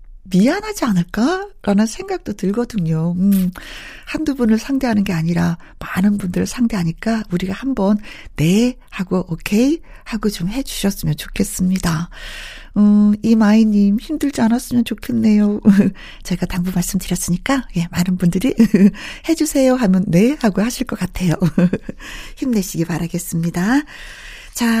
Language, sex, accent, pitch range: Korean, female, native, 190-260 Hz